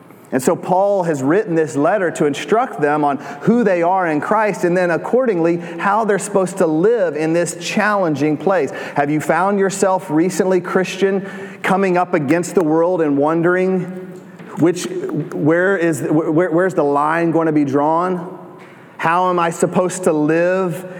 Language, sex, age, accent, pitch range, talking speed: English, male, 30-49, American, 150-185 Hz, 165 wpm